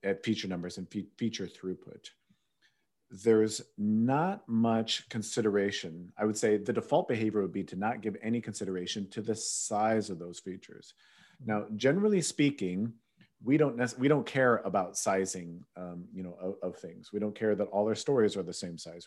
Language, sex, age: English, male, 40-59